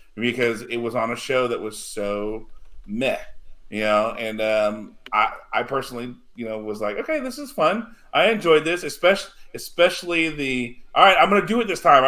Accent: American